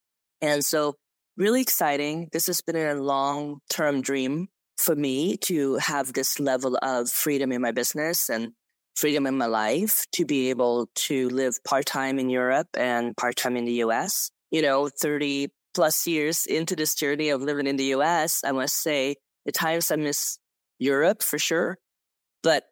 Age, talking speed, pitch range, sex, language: 20-39, 175 wpm, 130-165 Hz, female, English